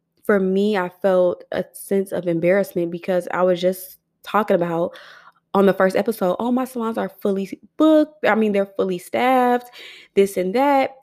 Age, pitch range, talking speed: 20-39, 180-205 Hz, 175 wpm